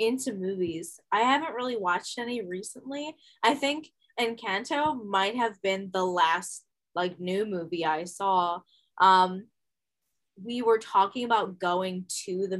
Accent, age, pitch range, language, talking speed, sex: American, 10-29, 175-220 Hz, English, 140 wpm, female